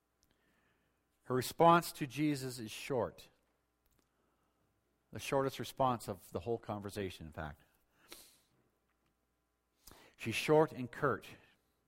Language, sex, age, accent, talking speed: English, male, 50-69, American, 95 wpm